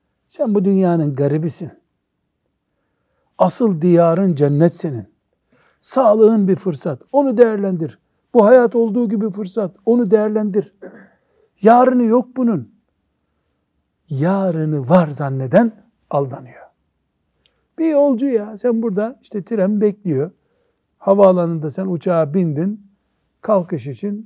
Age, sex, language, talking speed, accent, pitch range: 60-79, male, Turkish, 100 wpm, native, 140-210 Hz